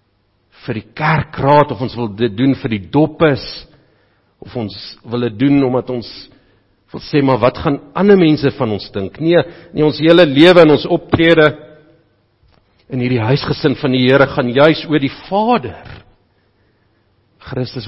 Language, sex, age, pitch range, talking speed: English, male, 50-69, 105-140 Hz, 160 wpm